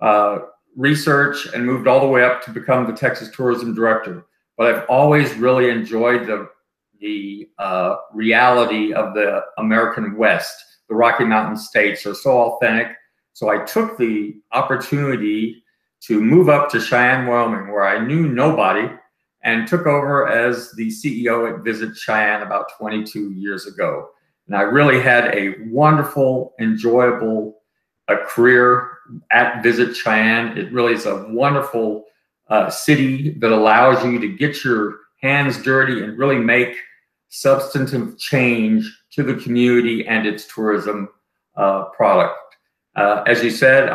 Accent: American